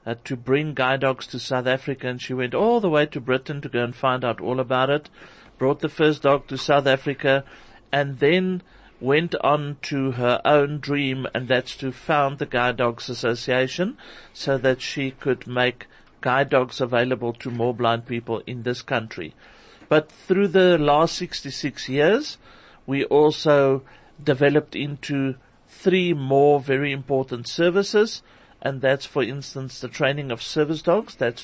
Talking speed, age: 165 wpm, 50-69